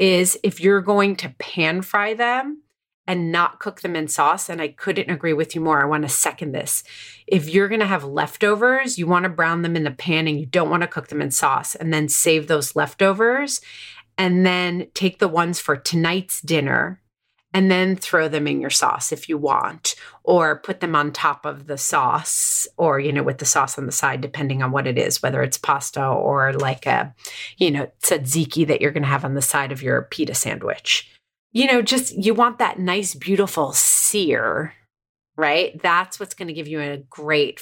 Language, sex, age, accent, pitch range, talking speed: English, female, 30-49, American, 150-205 Hz, 210 wpm